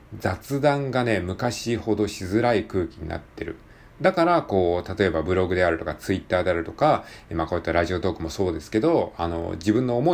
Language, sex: Japanese, male